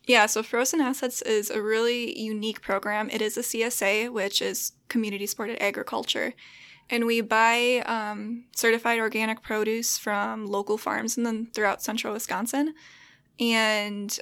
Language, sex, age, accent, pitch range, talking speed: English, female, 10-29, American, 210-235 Hz, 140 wpm